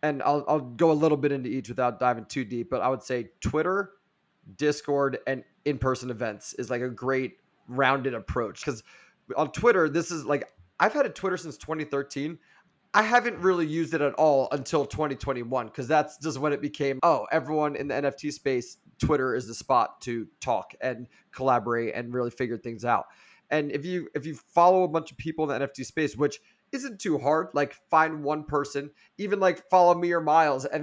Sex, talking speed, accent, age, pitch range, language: male, 200 wpm, American, 30-49, 130-155 Hz, English